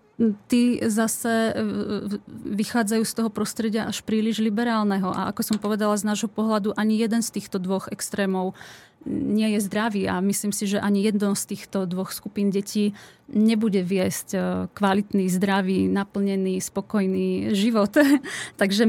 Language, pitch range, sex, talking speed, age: Czech, 190-215 Hz, female, 140 wpm, 30-49